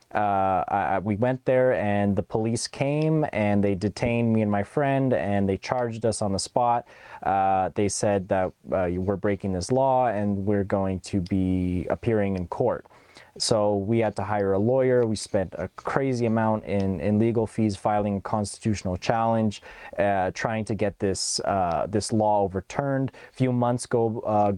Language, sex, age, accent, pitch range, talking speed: English, male, 20-39, American, 100-120 Hz, 175 wpm